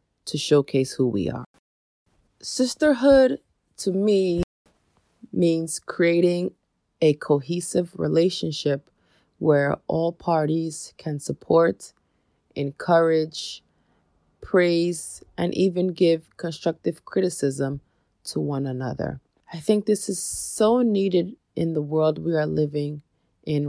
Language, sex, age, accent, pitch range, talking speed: English, female, 20-39, American, 150-185 Hz, 105 wpm